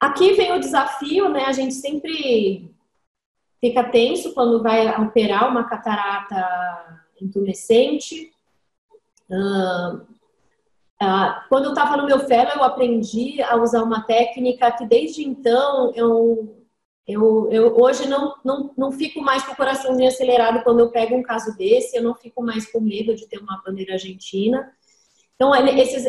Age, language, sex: 30-49, Portuguese, female